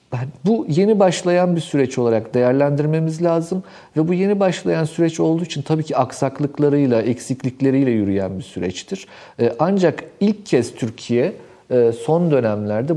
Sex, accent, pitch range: male, native, 120-170 Hz